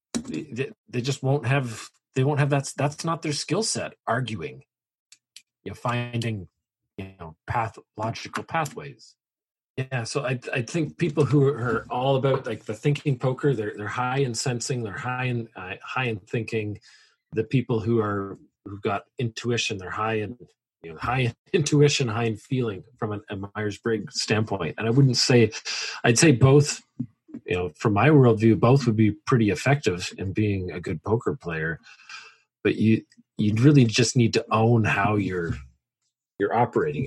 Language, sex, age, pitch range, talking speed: English, male, 40-59, 105-130 Hz, 175 wpm